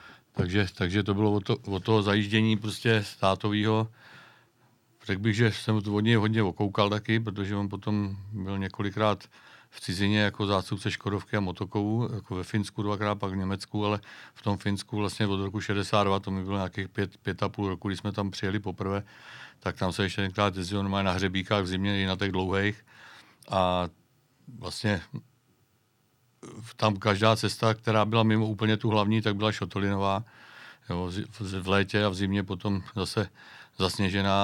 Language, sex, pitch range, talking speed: Czech, male, 95-110 Hz, 170 wpm